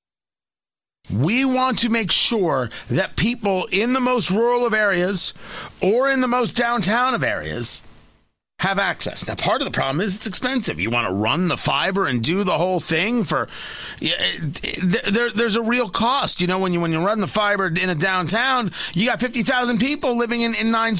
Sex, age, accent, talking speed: male, 40-59, American, 190 wpm